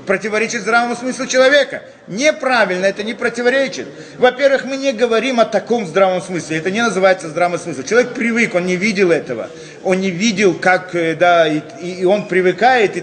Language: Russian